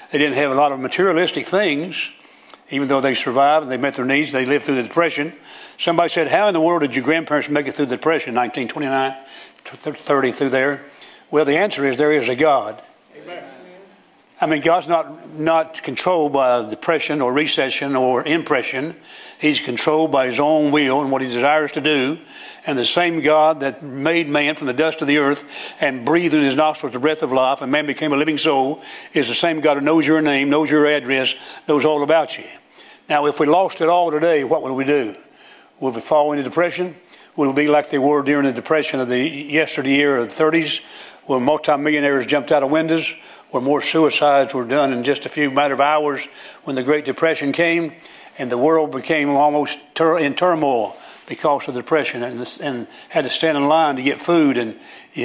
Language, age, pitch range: English, 60-79, 140-160 Hz